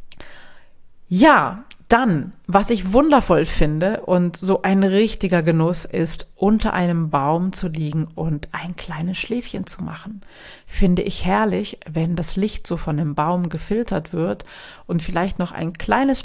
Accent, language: German, German